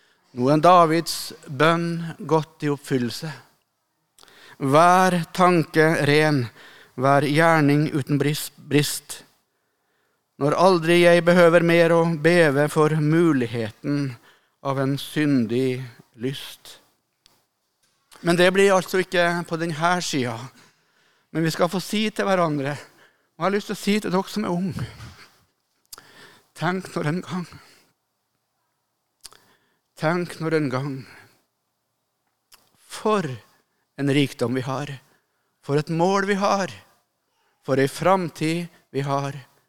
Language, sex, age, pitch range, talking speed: Danish, male, 60-79, 135-175 Hz, 115 wpm